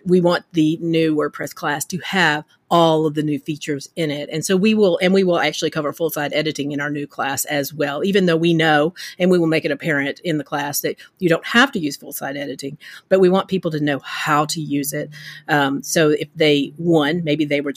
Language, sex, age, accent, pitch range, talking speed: English, female, 40-59, American, 150-190 Hz, 245 wpm